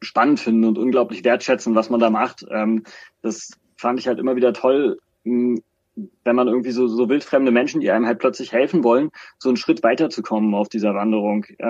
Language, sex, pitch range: German, male, 110-125 Hz